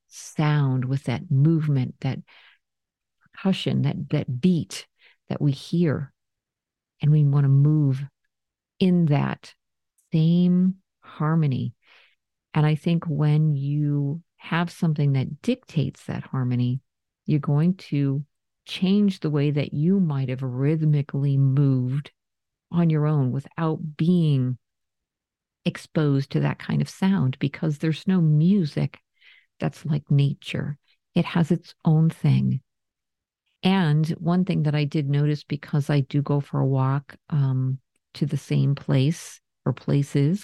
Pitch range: 140-165 Hz